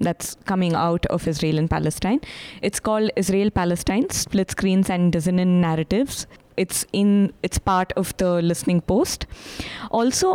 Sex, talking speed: female, 145 wpm